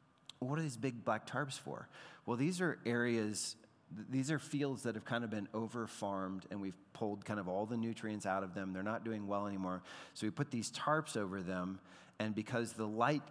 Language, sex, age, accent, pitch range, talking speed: English, male, 40-59, American, 100-130 Hz, 210 wpm